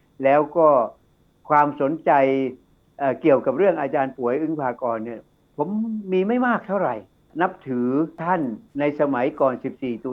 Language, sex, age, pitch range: Thai, male, 60-79, 125-155 Hz